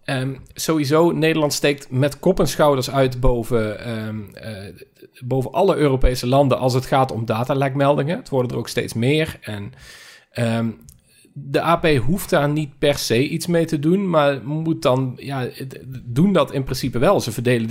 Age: 40-59